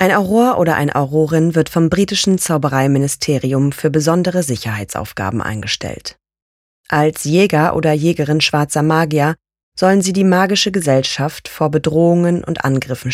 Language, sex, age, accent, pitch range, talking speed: German, female, 30-49, German, 140-180 Hz, 130 wpm